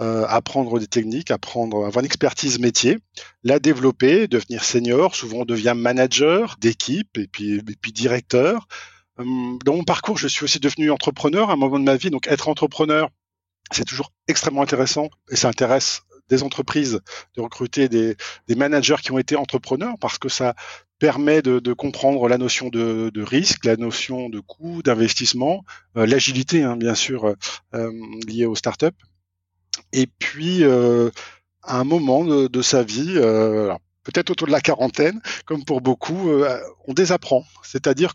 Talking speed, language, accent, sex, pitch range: 170 wpm, French, French, male, 120-150 Hz